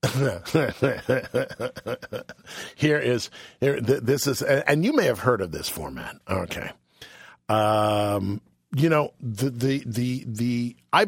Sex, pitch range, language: male, 105-145 Hz, English